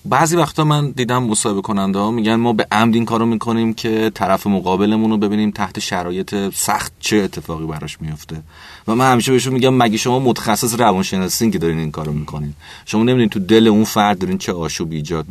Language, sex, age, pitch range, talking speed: Persian, male, 30-49, 85-120 Hz, 190 wpm